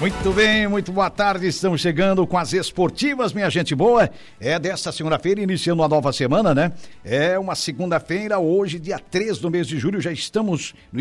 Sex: male